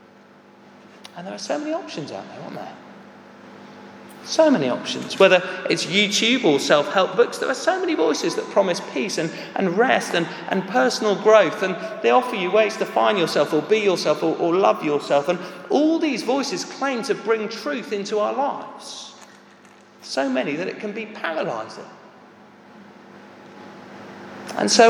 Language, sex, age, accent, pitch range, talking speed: English, male, 40-59, British, 175-230 Hz, 165 wpm